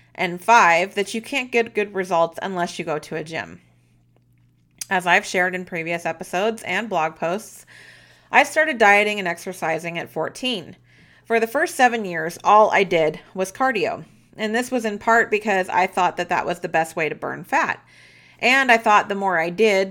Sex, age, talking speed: female, 30-49, 195 wpm